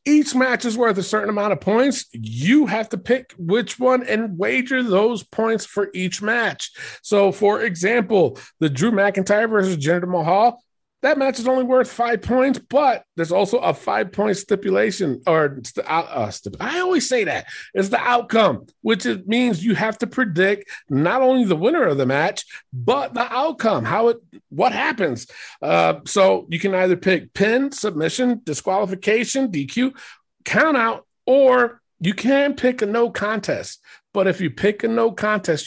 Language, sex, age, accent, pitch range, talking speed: English, male, 40-59, American, 160-230 Hz, 175 wpm